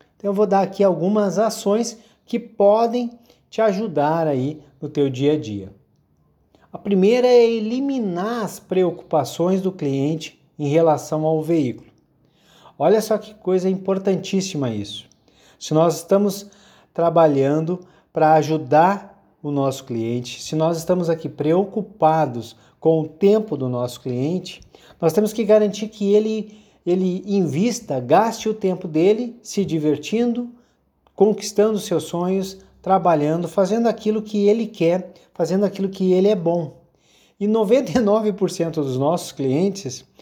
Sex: male